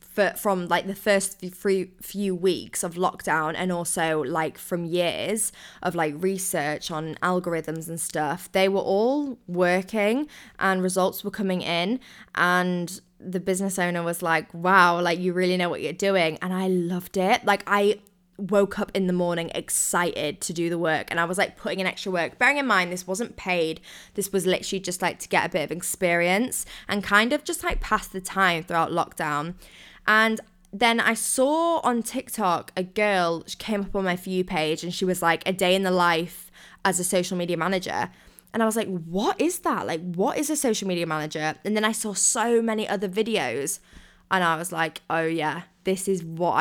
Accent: British